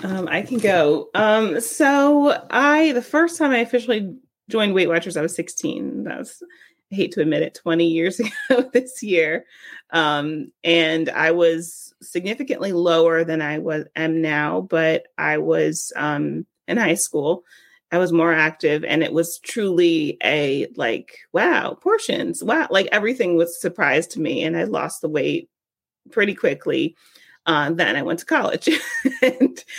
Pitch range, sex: 160-205 Hz, female